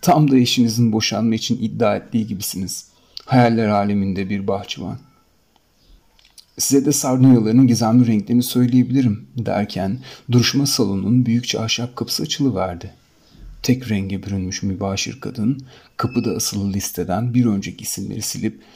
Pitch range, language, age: 95-120 Hz, Turkish, 40-59